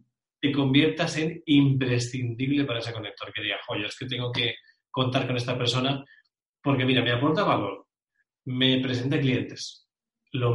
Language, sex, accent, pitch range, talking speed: Spanish, male, Spanish, 120-145 Hz, 155 wpm